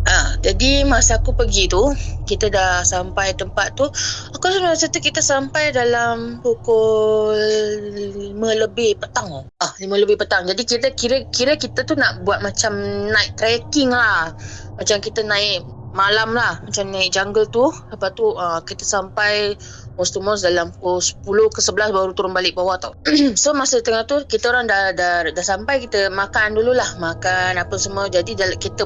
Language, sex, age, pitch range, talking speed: Malay, female, 20-39, 180-240 Hz, 165 wpm